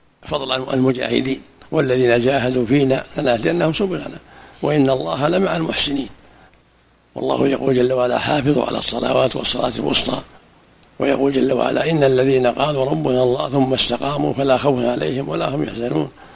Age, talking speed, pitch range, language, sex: 60-79, 130 wpm, 130-155 Hz, Arabic, male